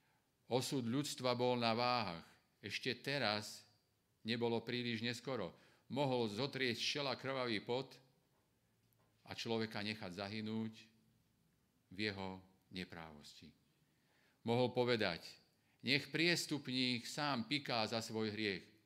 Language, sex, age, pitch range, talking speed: Slovak, male, 50-69, 100-125 Hz, 100 wpm